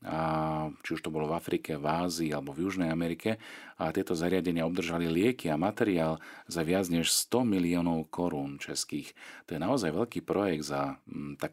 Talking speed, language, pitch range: 175 wpm, Slovak, 80-95 Hz